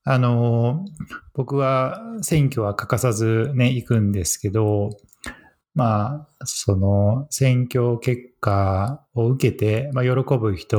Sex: male